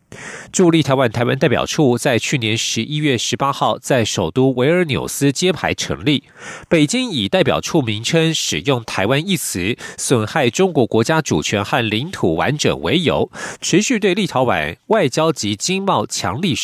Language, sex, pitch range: Russian, male, 120-170 Hz